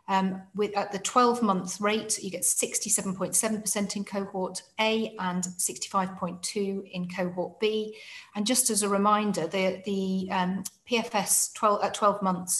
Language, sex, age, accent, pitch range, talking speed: English, female, 40-59, British, 185-215 Hz, 150 wpm